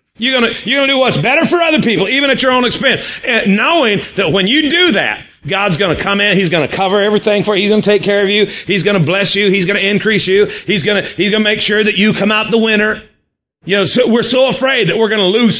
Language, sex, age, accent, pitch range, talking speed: English, male, 40-59, American, 185-225 Hz, 260 wpm